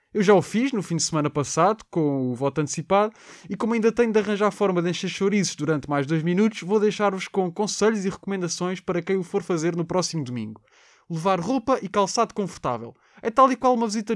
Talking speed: 225 wpm